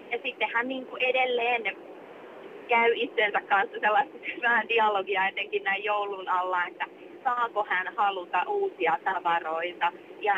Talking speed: 120 wpm